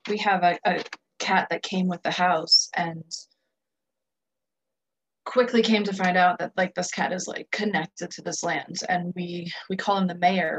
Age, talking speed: 20-39, 185 wpm